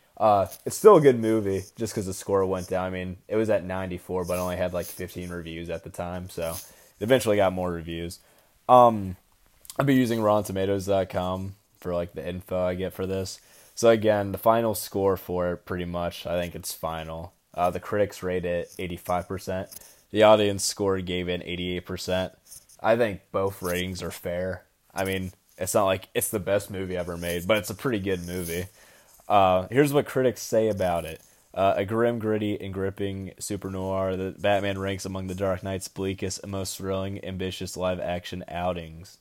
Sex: male